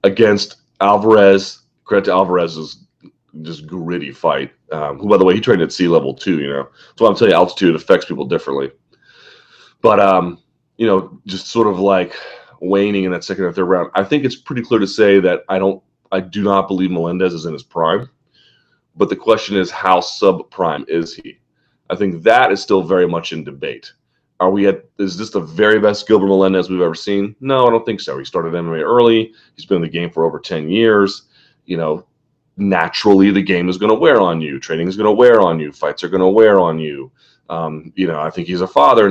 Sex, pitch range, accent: male, 85-105 Hz, American